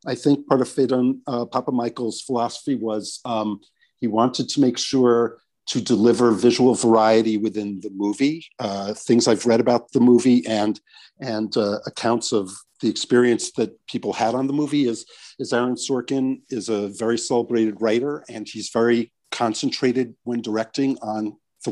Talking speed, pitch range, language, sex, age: 165 wpm, 110-125 Hz, English, male, 50-69